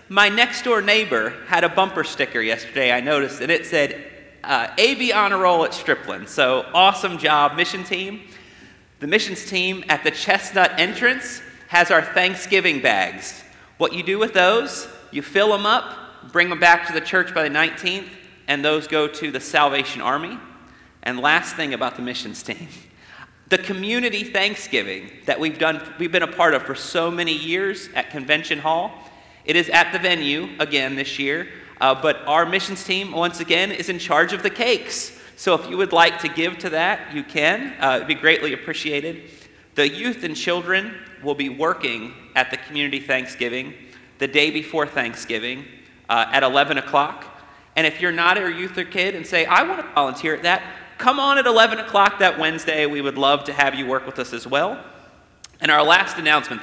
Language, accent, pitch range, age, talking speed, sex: English, American, 145-190 Hz, 40-59, 190 wpm, male